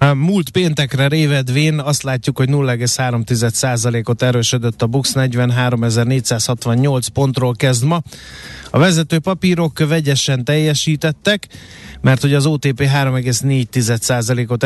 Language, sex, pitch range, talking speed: Hungarian, male, 120-150 Hz, 95 wpm